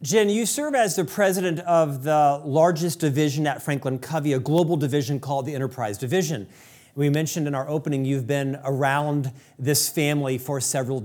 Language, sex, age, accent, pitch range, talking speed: English, male, 40-59, American, 140-175 Hz, 175 wpm